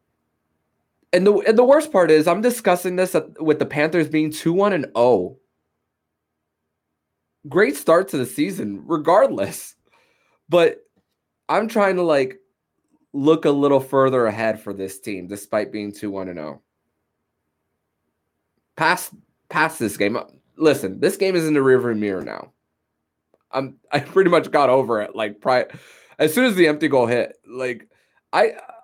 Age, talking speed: 20-39, 150 wpm